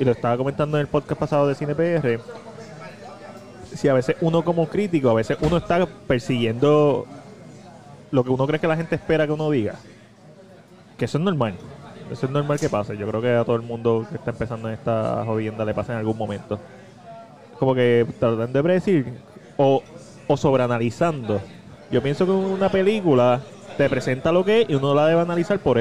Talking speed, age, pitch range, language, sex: 195 wpm, 20-39, 120-155 Hz, Spanish, male